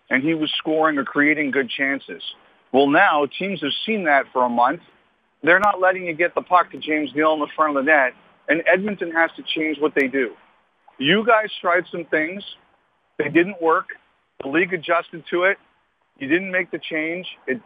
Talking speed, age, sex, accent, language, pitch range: 205 wpm, 40-59, male, American, English, 150-180 Hz